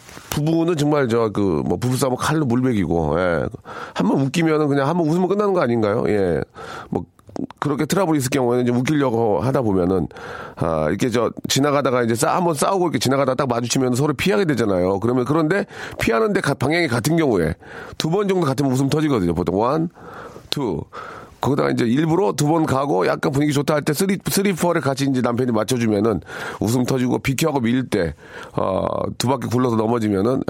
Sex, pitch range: male, 115-155 Hz